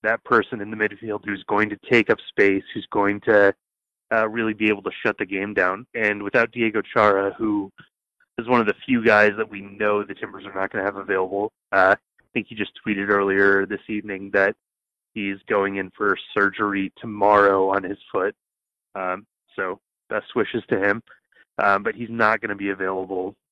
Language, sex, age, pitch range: English, male, 20-39, 100-110 Hz